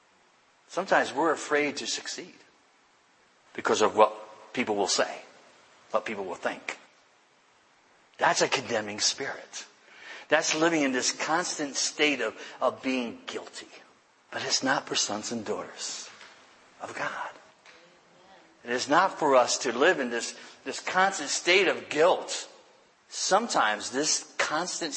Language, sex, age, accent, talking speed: English, male, 60-79, American, 130 wpm